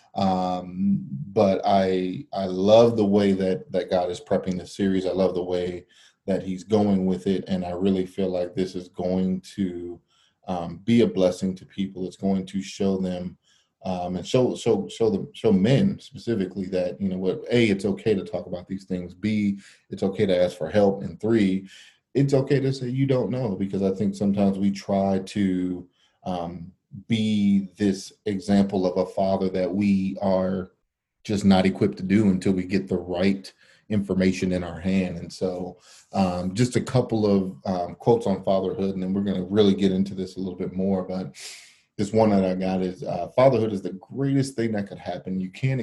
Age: 30-49